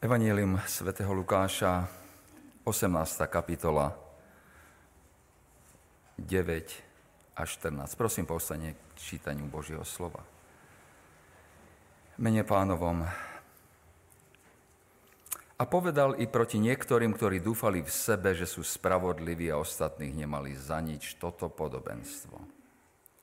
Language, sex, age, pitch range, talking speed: Slovak, male, 40-59, 80-110 Hz, 90 wpm